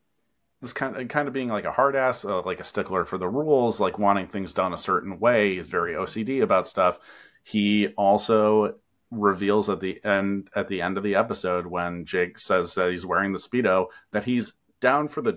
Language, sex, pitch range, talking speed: English, male, 90-110 Hz, 210 wpm